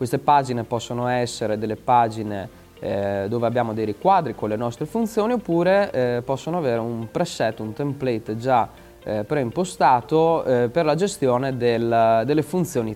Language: Italian